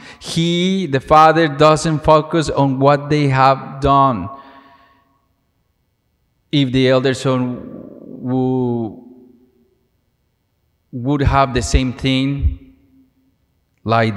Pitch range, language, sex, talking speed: 120-140 Hz, English, male, 85 wpm